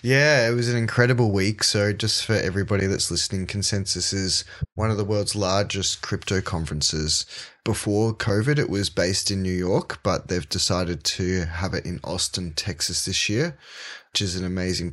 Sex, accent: male, Australian